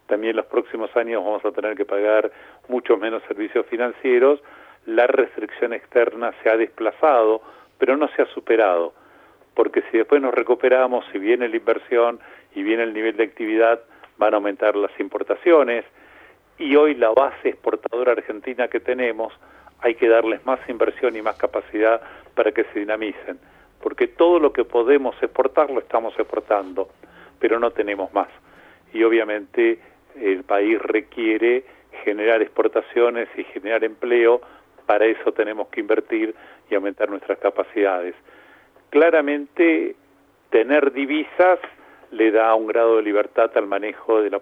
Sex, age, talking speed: male, 70-89, 150 wpm